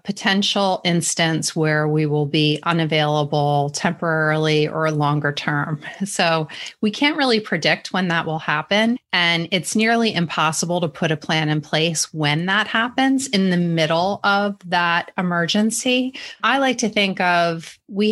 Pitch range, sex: 155-195 Hz, female